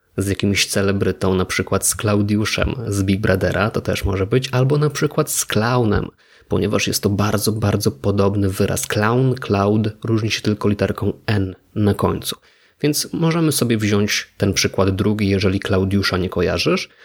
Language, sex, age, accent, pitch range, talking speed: Polish, male, 20-39, native, 95-115 Hz, 160 wpm